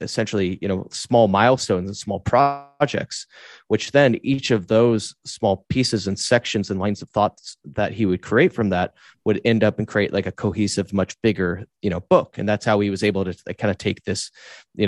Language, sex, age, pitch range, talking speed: English, male, 30-49, 95-115 Hz, 210 wpm